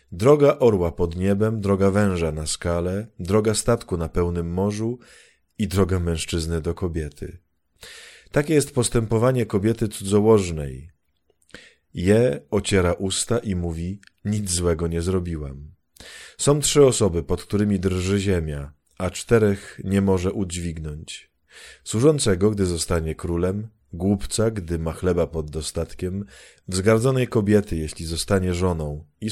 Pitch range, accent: 85-105 Hz, native